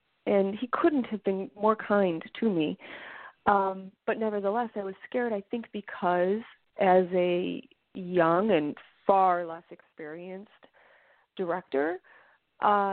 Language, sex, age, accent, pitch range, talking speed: English, female, 30-49, American, 175-210 Hz, 125 wpm